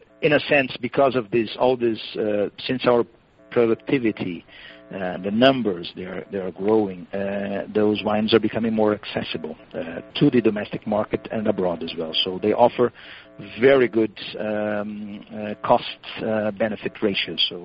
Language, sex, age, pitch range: English, male, 50-69, 100-115 Hz